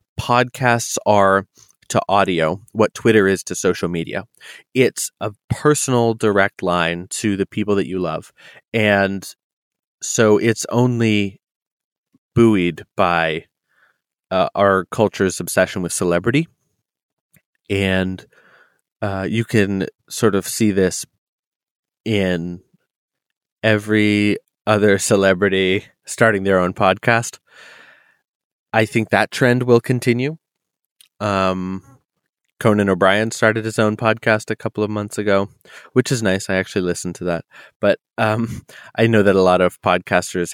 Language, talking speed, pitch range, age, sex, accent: English, 125 wpm, 95-110 Hz, 30-49, male, American